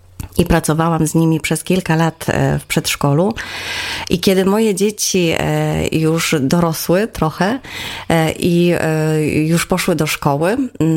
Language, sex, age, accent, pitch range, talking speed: Polish, female, 30-49, native, 150-190 Hz, 115 wpm